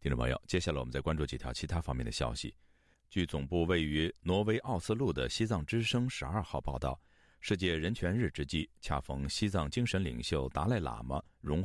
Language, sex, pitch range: Chinese, male, 65-95 Hz